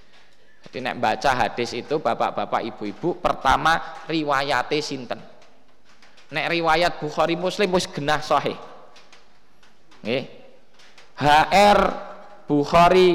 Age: 20-39